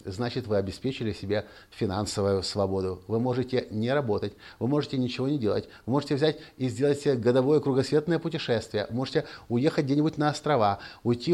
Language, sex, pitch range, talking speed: Russian, male, 110-150 Hz, 165 wpm